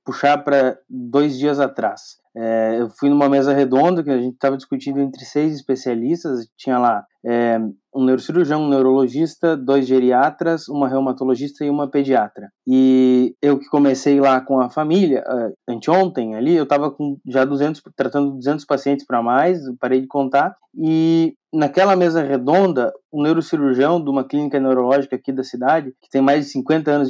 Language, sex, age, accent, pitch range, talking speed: Portuguese, male, 20-39, Brazilian, 130-155 Hz, 170 wpm